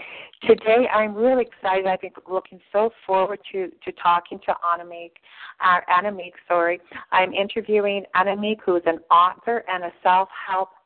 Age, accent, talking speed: 40-59, American, 140 wpm